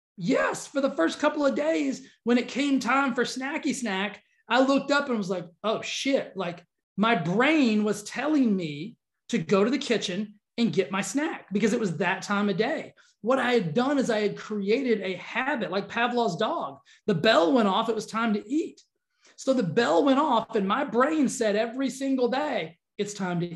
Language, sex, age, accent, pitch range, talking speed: English, male, 30-49, American, 195-265 Hz, 205 wpm